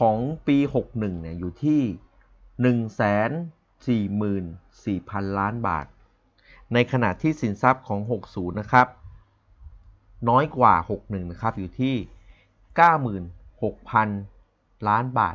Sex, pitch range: male, 100-130 Hz